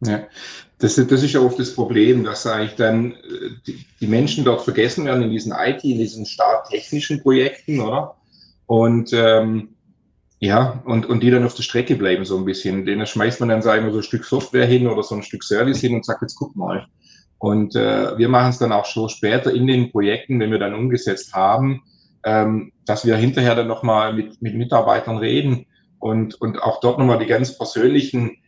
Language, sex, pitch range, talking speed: German, male, 110-125 Hz, 205 wpm